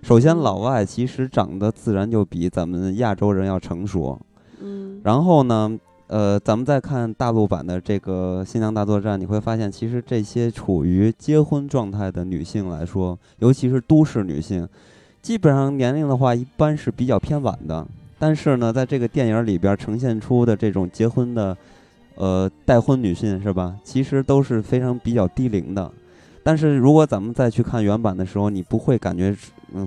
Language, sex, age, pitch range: Chinese, male, 20-39, 95-130 Hz